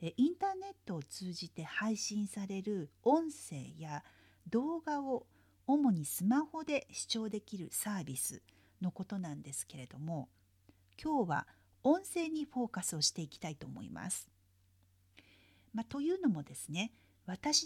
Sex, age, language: female, 50-69, Japanese